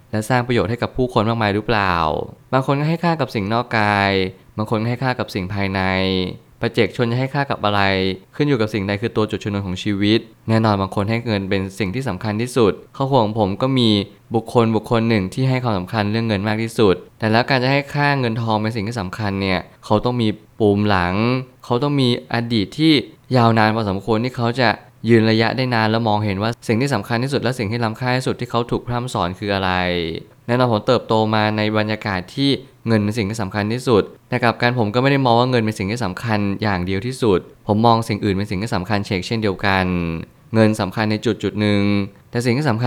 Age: 20-39